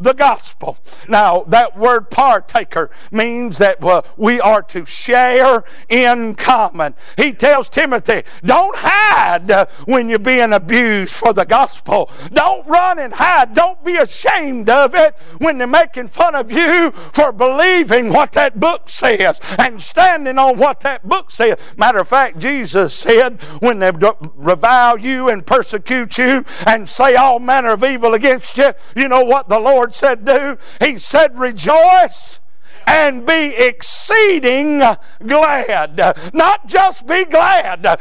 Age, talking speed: 60-79, 145 wpm